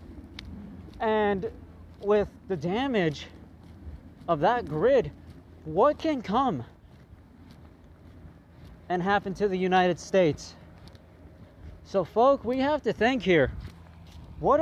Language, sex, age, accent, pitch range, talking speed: English, male, 30-49, American, 135-220 Hz, 100 wpm